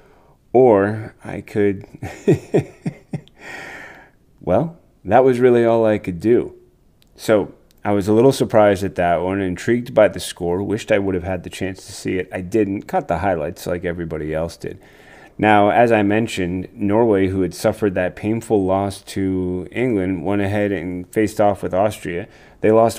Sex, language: male, English